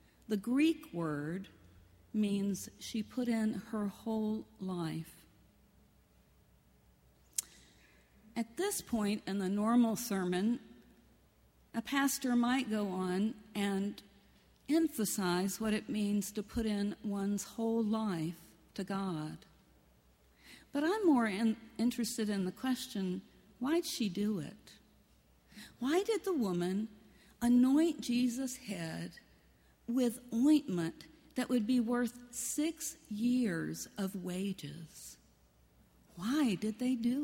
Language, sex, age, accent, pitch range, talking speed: English, female, 50-69, American, 180-245 Hz, 110 wpm